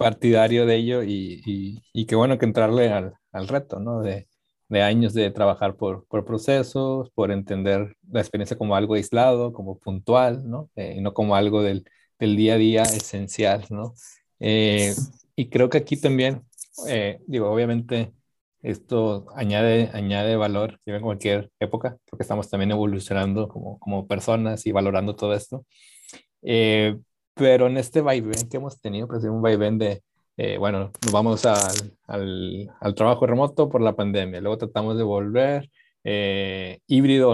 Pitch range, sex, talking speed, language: 105-125 Hz, male, 165 wpm, Spanish